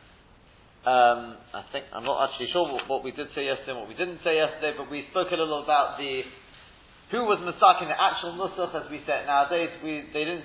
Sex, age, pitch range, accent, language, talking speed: male, 30-49, 135-170 Hz, British, English, 230 wpm